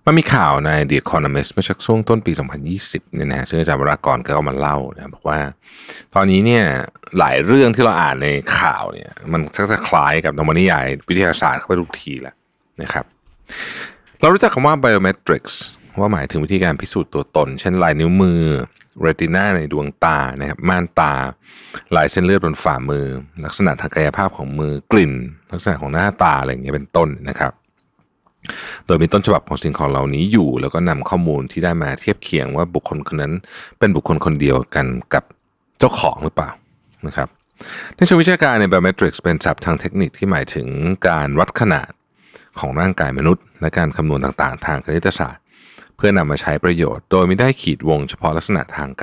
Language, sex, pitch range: Thai, male, 70-90 Hz